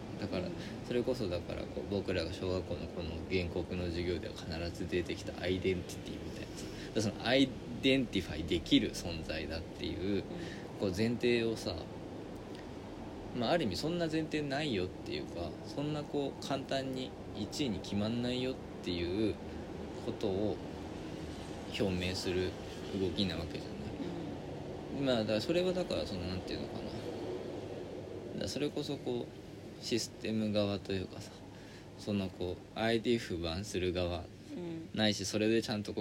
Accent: native